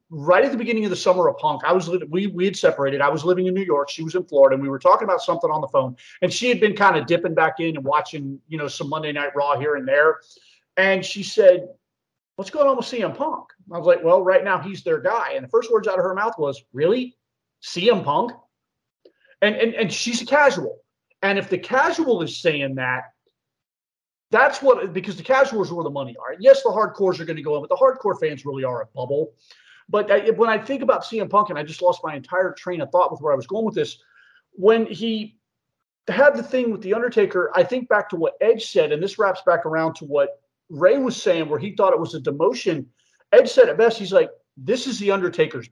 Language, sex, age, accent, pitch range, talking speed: English, male, 40-59, American, 160-245 Hz, 250 wpm